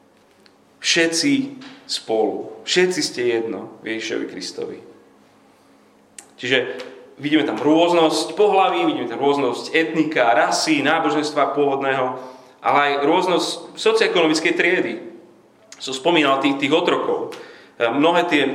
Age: 30-49